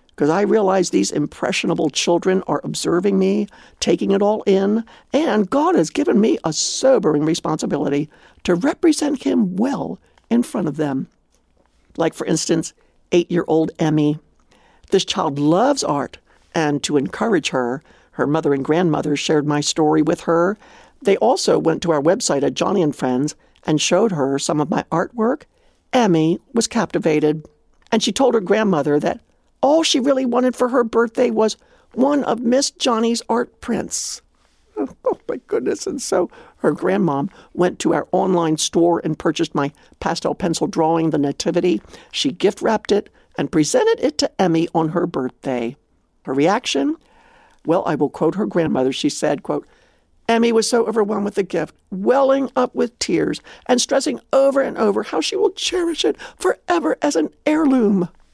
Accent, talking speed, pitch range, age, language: American, 165 wpm, 160-260 Hz, 60-79, English